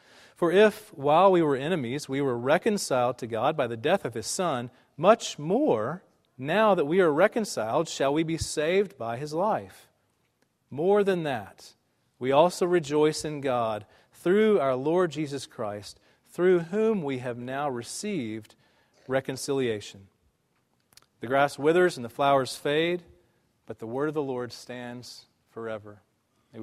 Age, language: 40-59, English